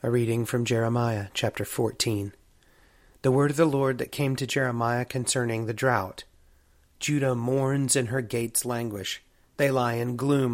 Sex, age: male, 30-49